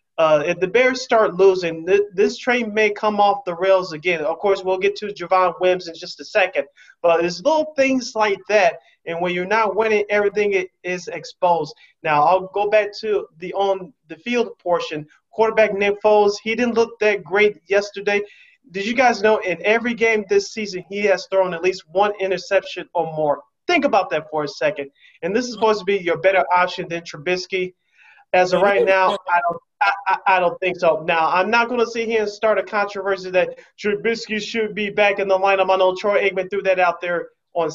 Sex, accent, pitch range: male, American, 175-215 Hz